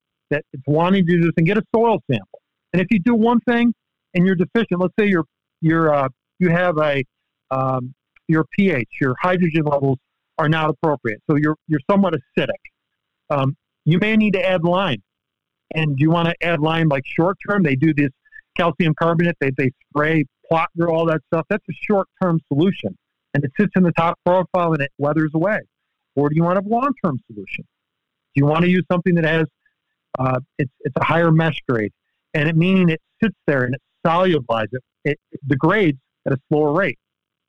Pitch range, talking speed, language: 145-180 Hz, 200 wpm, English